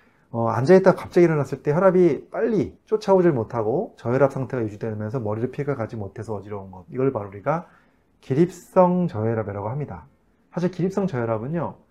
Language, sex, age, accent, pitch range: Korean, male, 30-49, native, 115-180 Hz